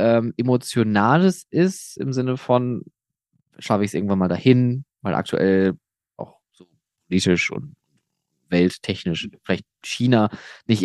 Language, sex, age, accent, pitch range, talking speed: German, male, 20-39, German, 125-160 Hz, 120 wpm